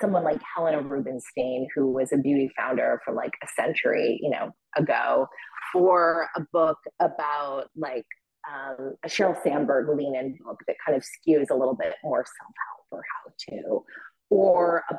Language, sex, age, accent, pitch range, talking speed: English, female, 30-49, American, 150-210 Hz, 170 wpm